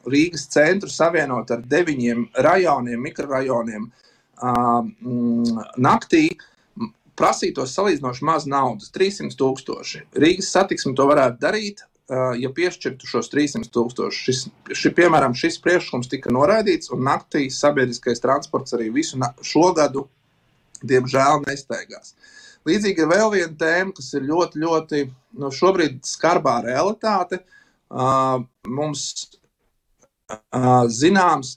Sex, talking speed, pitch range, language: male, 100 wpm, 125-165 Hz, Russian